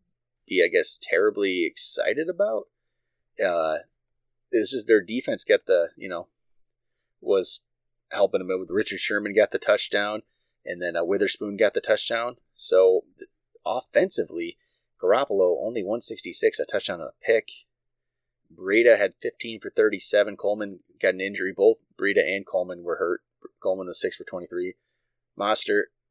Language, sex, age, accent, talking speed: English, male, 30-49, American, 140 wpm